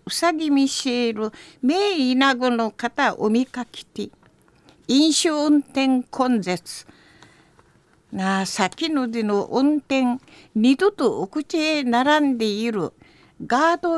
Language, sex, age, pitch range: Japanese, female, 60-79, 230-300 Hz